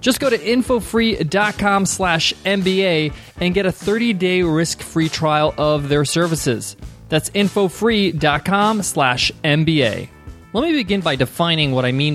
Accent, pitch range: American, 135-185 Hz